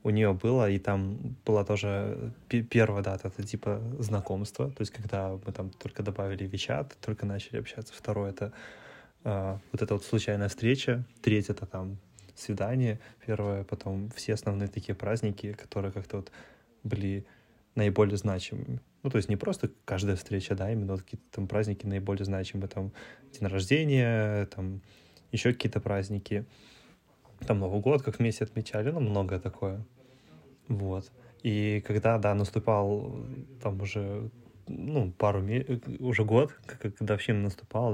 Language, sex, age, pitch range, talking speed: Russian, male, 20-39, 100-115 Hz, 150 wpm